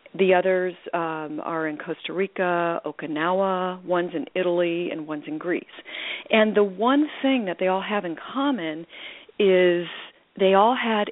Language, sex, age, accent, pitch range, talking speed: English, female, 40-59, American, 170-220 Hz, 155 wpm